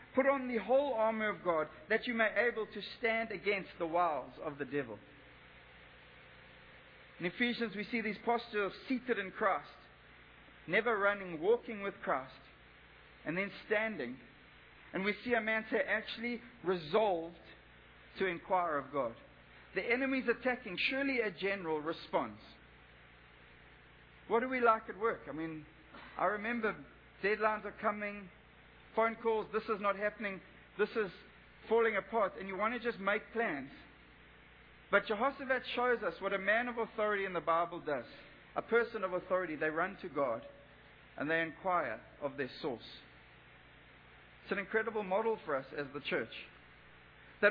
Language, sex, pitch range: English, male, 175-230 Hz